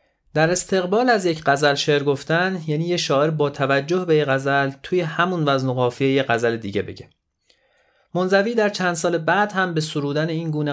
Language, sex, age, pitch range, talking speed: Persian, male, 30-49, 125-160 Hz, 190 wpm